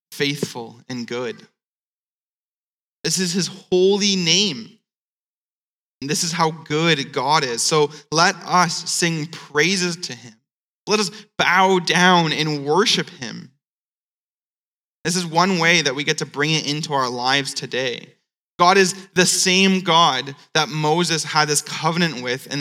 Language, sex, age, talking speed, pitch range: English, male, 20-39, 145 wpm, 140-175 Hz